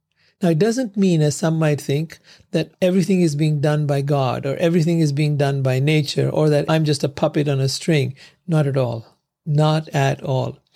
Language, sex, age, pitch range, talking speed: English, male, 50-69, 145-175 Hz, 205 wpm